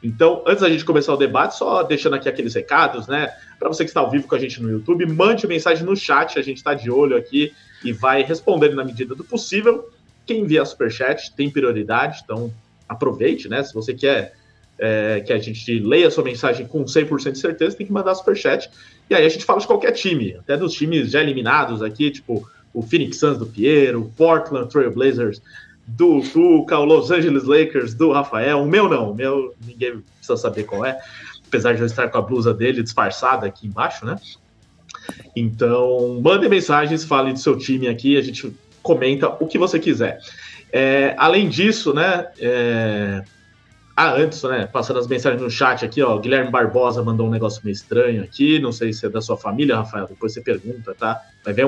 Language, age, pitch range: Portuguese, 20-39, 115-160 Hz